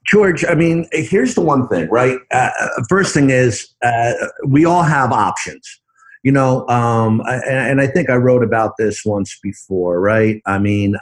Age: 50-69